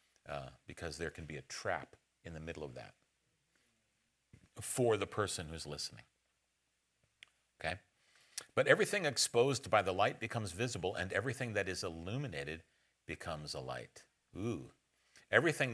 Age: 50-69